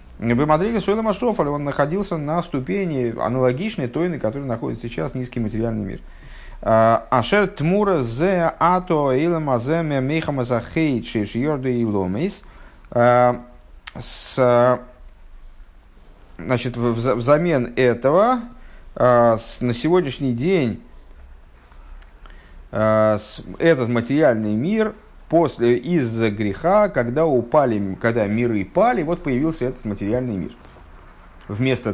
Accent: native